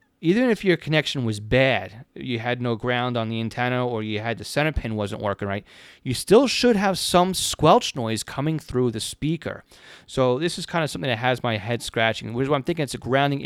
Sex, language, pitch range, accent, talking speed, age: male, English, 115-135 Hz, American, 230 wpm, 30-49